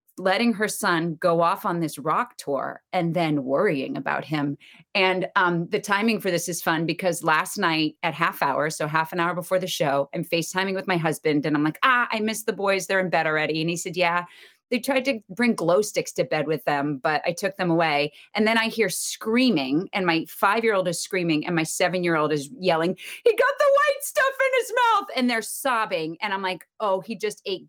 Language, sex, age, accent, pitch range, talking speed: English, female, 30-49, American, 170-240 Hz, 225 wpm